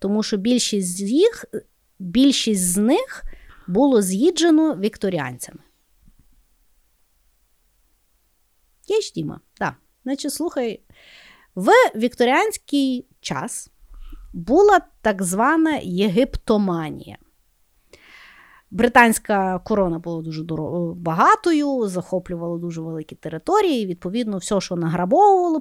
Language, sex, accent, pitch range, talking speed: Ukrainian, female, native, 190-295 Hz, 85 wpm